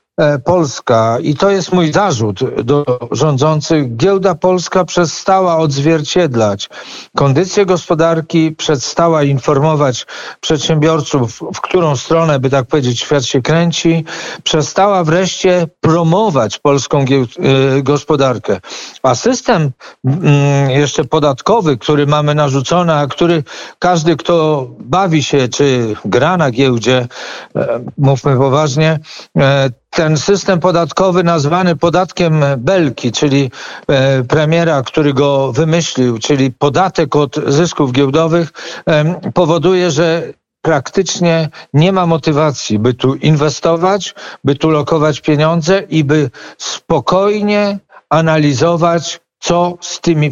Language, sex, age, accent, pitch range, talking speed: Polish, male, 50-69, native, 140-170 Hz, 105 wpm